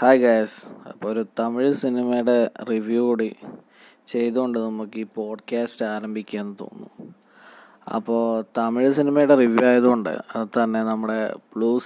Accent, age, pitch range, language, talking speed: native, 20-39, 110-120 Hz, Malayalam, 120 wpm